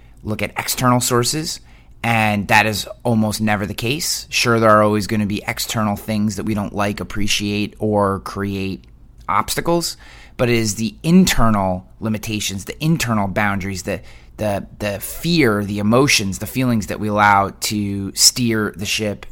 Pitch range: 100-115 Hz